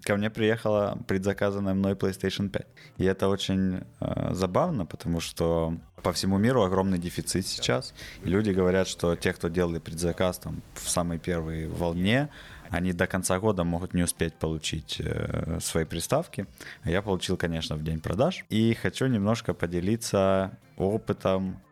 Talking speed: 145 wpm